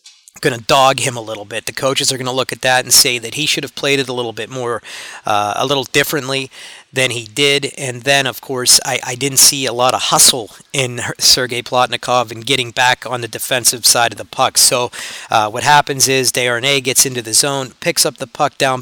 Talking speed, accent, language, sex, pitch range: 235 wpm, American, English, male, 120-135 Hz